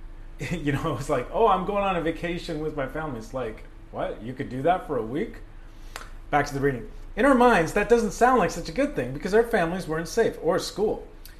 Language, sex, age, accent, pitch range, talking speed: English, male, 30-49, American, 115-150 Hz, 235 wpm